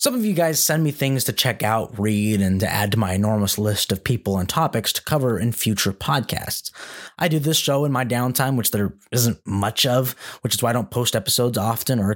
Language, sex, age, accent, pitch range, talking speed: English, male, 20-39, American, 110-160 Hz, 235 wpm